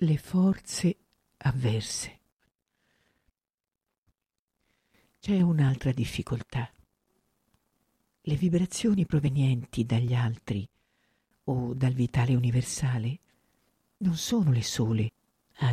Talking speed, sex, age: 75 wpm, female, 50-69